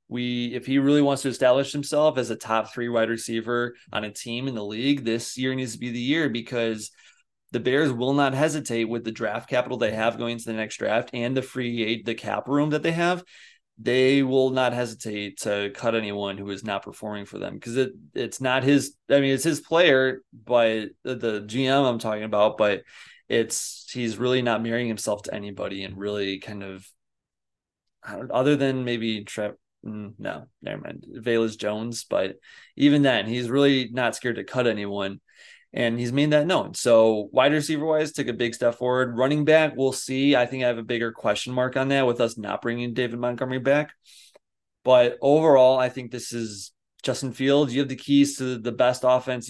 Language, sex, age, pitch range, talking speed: English, male, 30-49, 110-135 Hz, 200 wpm